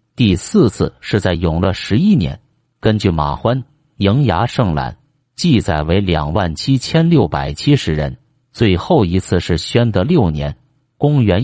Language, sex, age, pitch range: Chinese, male, 50-69, 90-140 Hz